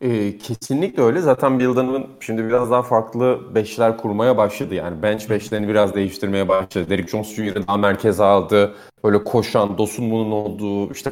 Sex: male